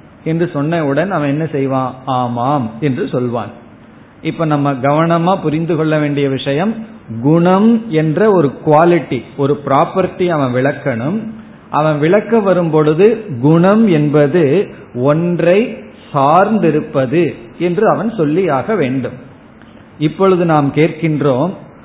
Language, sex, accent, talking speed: Tamil, male, native, 105 wpm